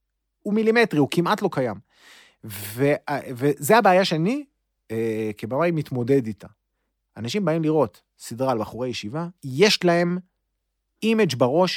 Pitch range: 110-165 Hz